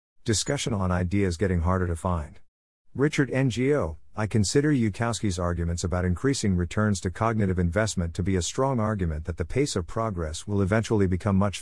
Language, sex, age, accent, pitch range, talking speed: English, male, 50-69, American, 90-115 Hz, 170 wpm